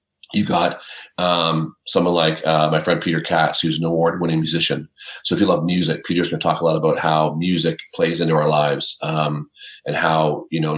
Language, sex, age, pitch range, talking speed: English, male, 40-59, 80-95 Hz, 210 wpm